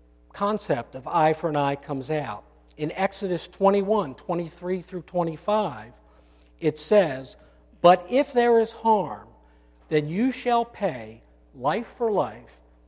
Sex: male